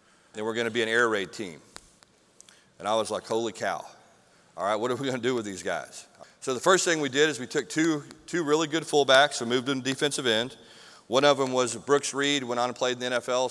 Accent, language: American, English